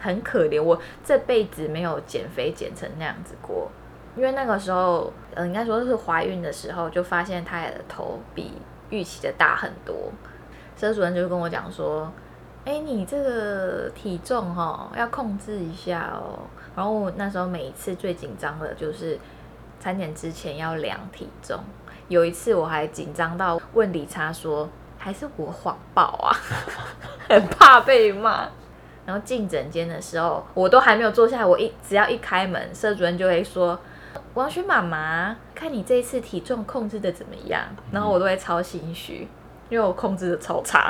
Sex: female